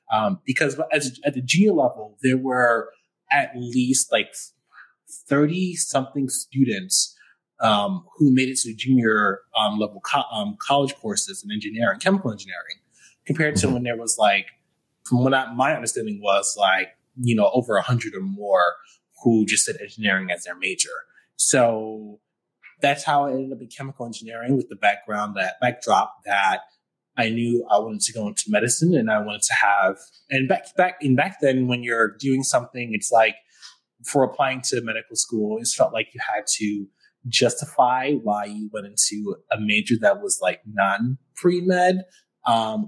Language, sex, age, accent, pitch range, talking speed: English, male, 20-39, American, 110-145 Hz, 170 wpm